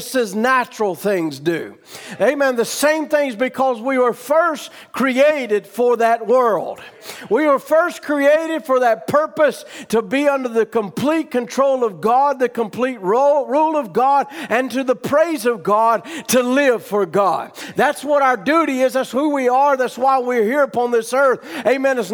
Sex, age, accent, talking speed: male, 50-69, American, 175 wpm